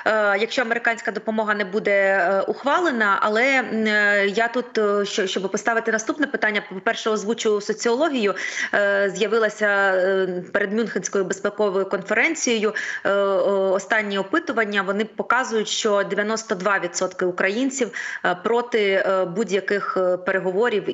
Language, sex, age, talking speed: Ukrainian, female, 30-49, 90 wpm